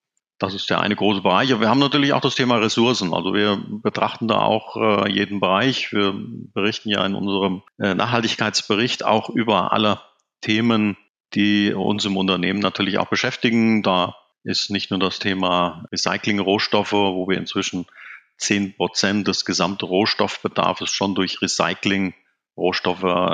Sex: male